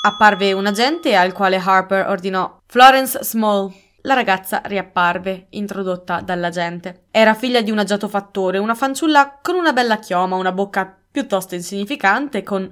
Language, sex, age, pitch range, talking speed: Italian, female, 20-39, 190-250 Hz, 145 wpm